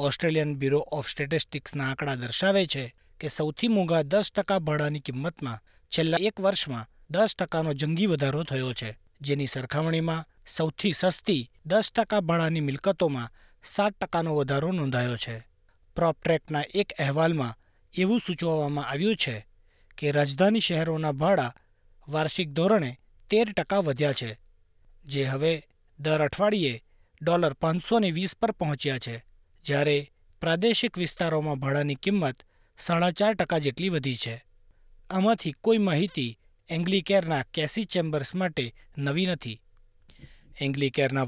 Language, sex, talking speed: Gujarati, male, 115 wpm